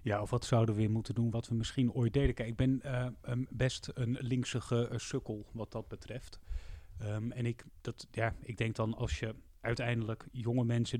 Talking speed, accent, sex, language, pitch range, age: 185 wpm, Dutch, male, Dutch, 105-125 Hz, 30-49